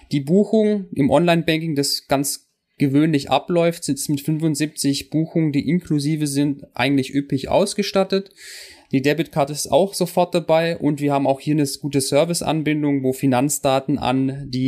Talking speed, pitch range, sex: 145 wpm, 130-155 Hz, male